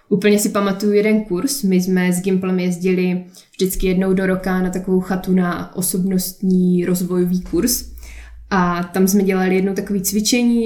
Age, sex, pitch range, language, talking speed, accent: 20-39, female, 185-205 Hz, Czech, 160 wpm, native